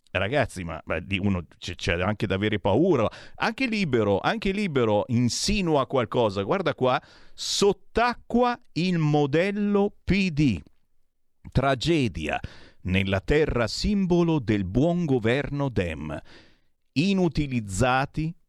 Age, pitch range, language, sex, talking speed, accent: 50-69, 100-155 Hz, Italian, male, 95 wpm, native